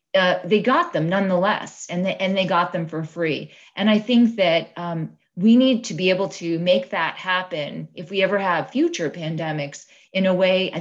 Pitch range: 165-205 Hz